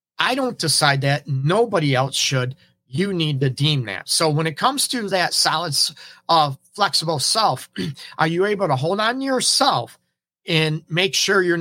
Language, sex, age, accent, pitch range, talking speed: English, male, 40-59, American, 135-170 Hz, 175 wpm